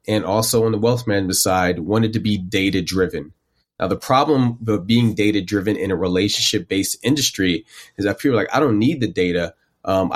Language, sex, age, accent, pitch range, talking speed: English, male, 30-49, American, 95-115 Hz, 205 wpm